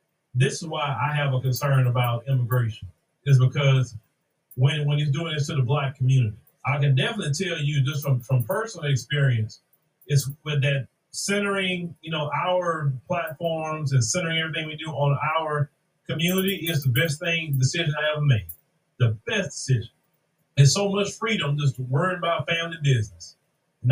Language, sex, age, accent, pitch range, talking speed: English, male, 30-49, American, 135-170 Hz, 170 wpm